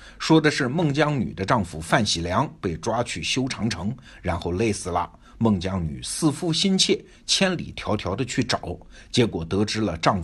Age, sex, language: 50-69, male, Chinese